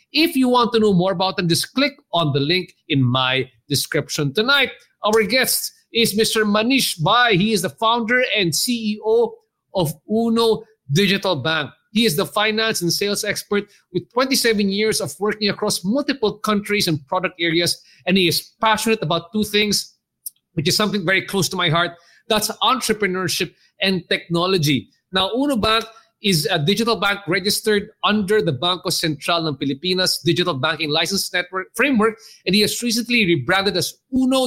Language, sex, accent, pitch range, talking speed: English, male, Filipino, 175-225 Hz, 165 wpm